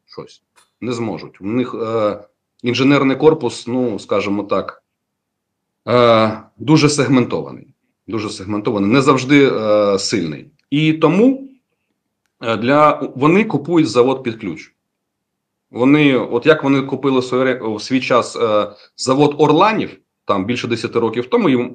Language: Ukrainian